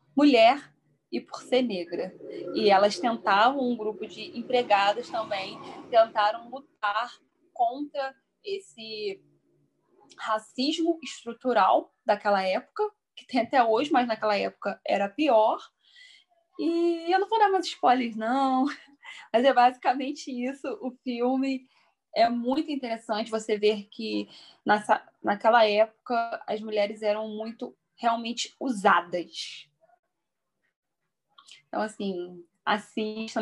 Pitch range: 205-265 Hz